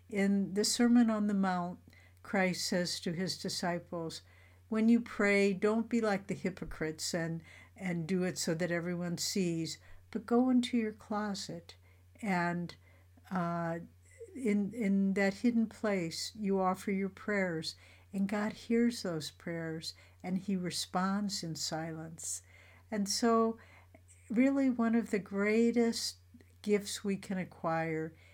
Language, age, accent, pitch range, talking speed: English, 60-79, American, 150-200 Hz, 135 wpm